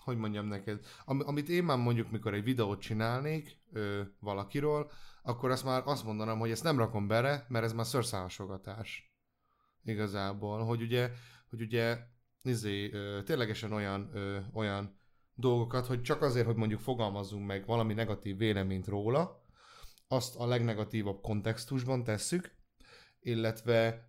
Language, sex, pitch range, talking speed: Hungarian, male, 105-120 Hz, 140 wpm